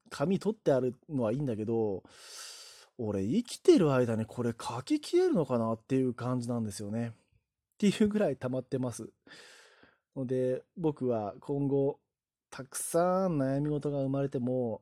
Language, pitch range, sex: Japanese, 120-180 Hz, male